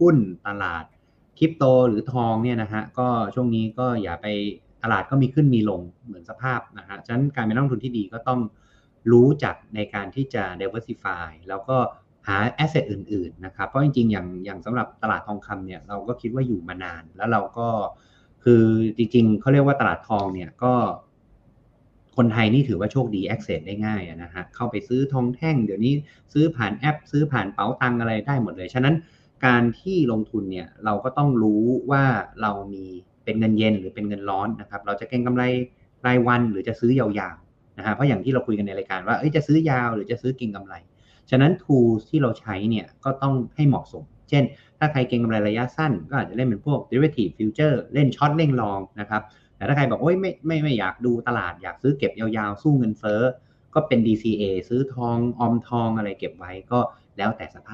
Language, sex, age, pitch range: Thai, male, 30-49, 105-130 Hz